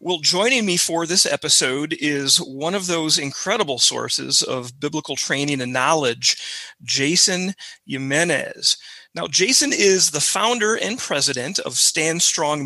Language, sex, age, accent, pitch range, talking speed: English, male, 40-59, American, 140-180 Hz, 135 wpm